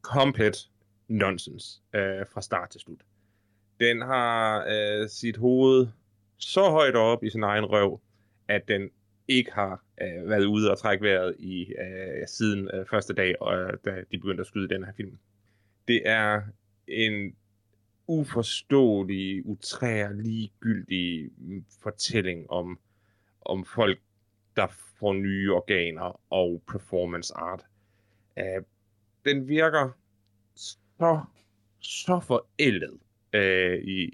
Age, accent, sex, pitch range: 30-49, native, male, 100-110 Hz